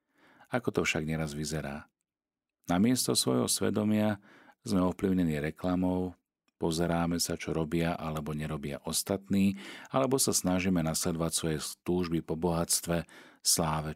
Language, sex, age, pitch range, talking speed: Slovak, male, 40-59, 75-100 Hz, 115 wpm